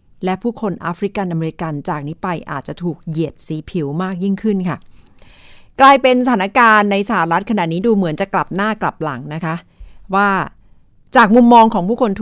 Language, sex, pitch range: Thai, female, 160-215 Hz